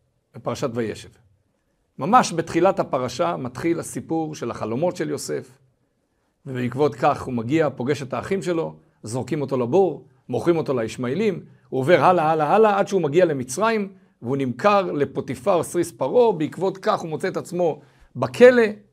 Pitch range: 130-200 Hz